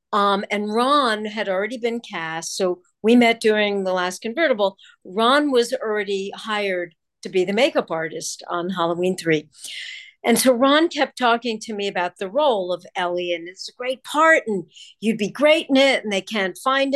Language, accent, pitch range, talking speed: English, American, 190-240 Hz, 190 wpm